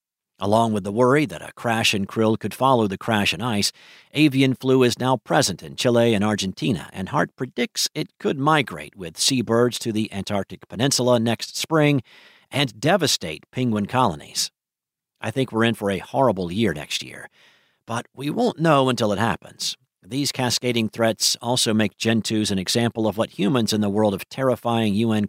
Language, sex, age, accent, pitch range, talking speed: English, male, 50-69, American, 105-130 Hz, 180 wpm